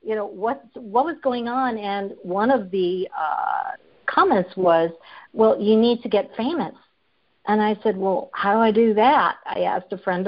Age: 50-69